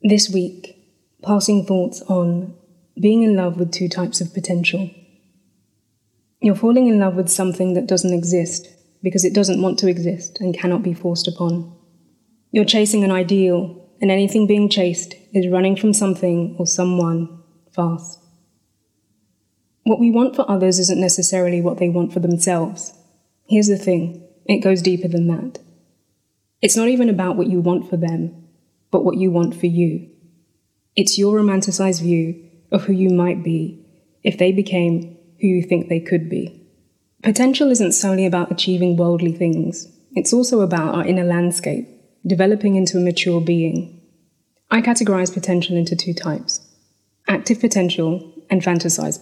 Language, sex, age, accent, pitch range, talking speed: English, female, 20-39, British, 170-190 Hz, 155 wpm